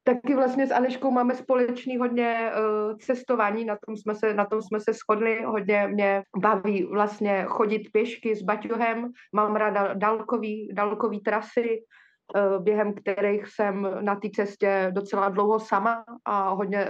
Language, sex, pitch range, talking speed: Slovak, female, 200-225 Hz, 140 wpm